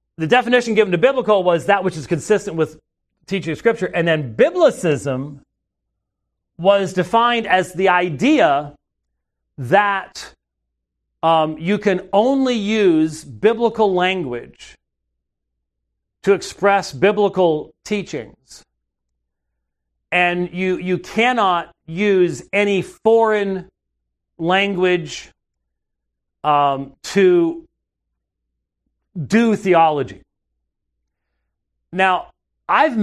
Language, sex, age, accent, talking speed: English, male, 40-59, American, 85 wpm